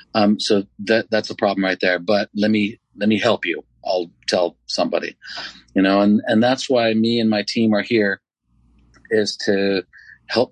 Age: 40-59